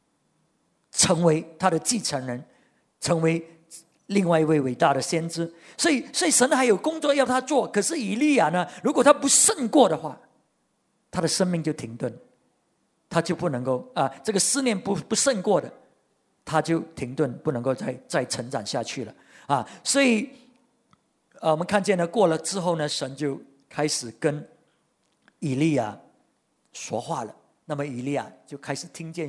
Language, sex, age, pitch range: English, male, 50-69, 145-210 Hz